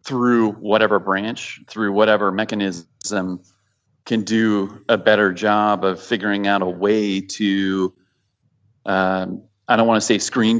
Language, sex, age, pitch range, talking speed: English, male, 30-49, 95-110 Hz, 135 wpm